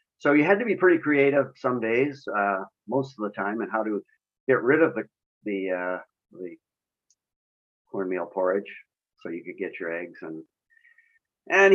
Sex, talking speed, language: male, 175 wpm, English